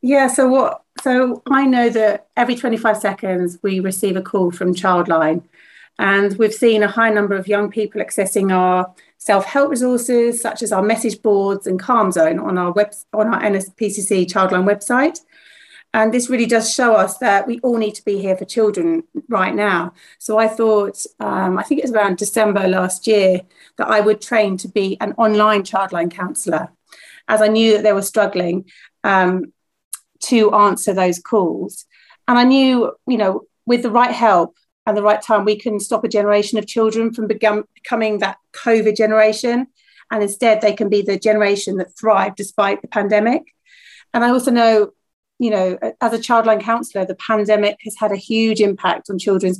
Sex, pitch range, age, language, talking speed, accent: female, 195-230 Hz, 40-59, English, 185 wpm, British